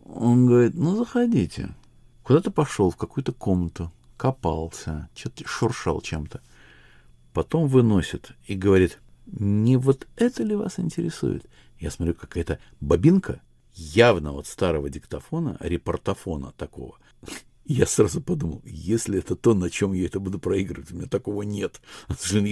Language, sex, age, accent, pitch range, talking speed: Russian, male, 50-69, native, 80-115 Hz, 135 wpm